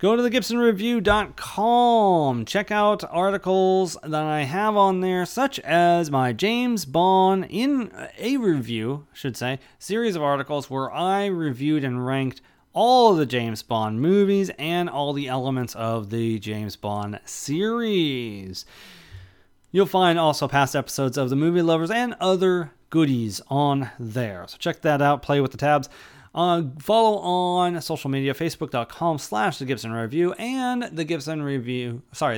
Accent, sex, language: American, male, English